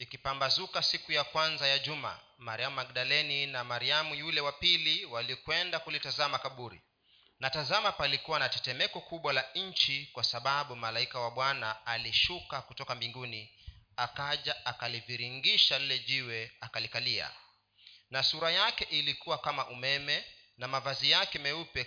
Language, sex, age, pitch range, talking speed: Swahili, male, 40-59, 120-150 Hz, 130 wpm